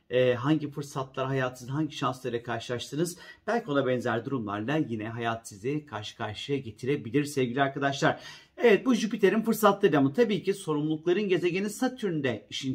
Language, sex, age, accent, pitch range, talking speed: Turkish, male, 40-59, native, 130-170 Hz, 135 wpm